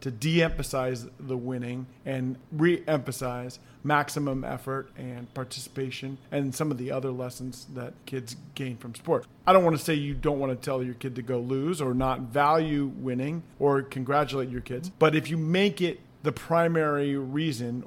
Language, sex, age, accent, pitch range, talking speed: English, male, 40-59, American, 130-150 Hz, 170 wpm